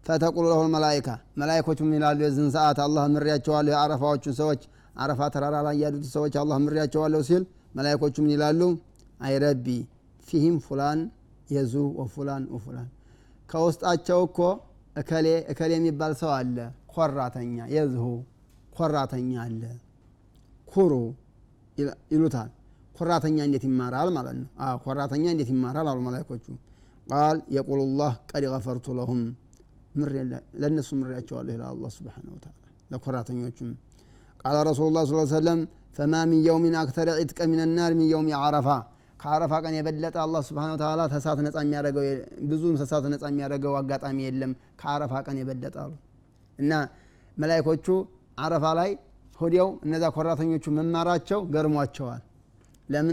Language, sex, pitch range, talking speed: Amharic, male, 125-155 Hz, 100 wpm